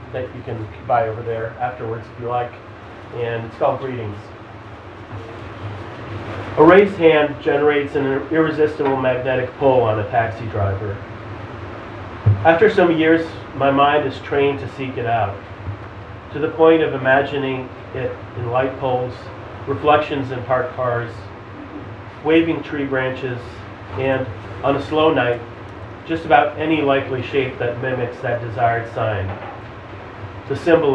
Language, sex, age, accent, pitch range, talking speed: English, male, 40-59, American, 110-140 Hz, 135 wpm